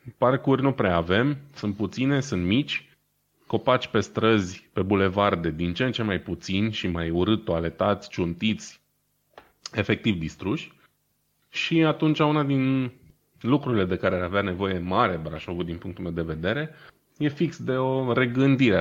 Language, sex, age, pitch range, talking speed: Romanian, male, 20-39, 90-120 Hz, 155 wpm